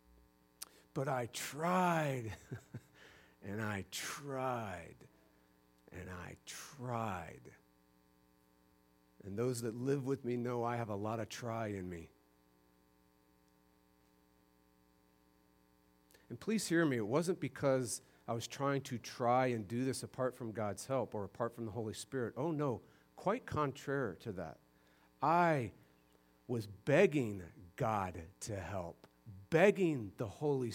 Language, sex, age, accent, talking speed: English, male, 50-69, American, 125 wpm